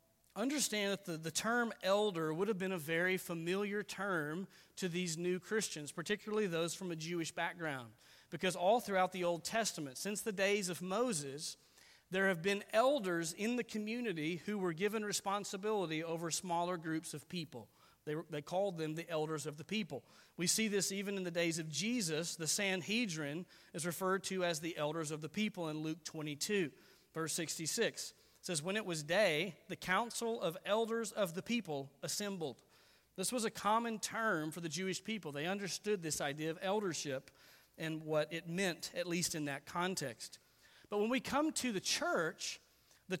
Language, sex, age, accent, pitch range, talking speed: English, male, 40-59, American, 160-205 Hz, 180 wpm